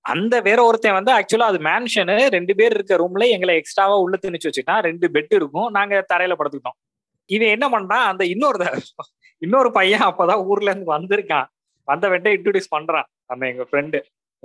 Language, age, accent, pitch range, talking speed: Tamil, 20-39, native, 145-210 Hz, 110 wpm